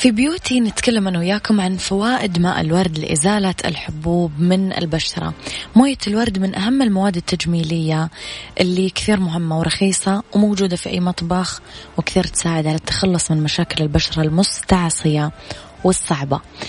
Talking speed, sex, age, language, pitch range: 125 wpm, female, 20-39, Arabic, 165-190 Hz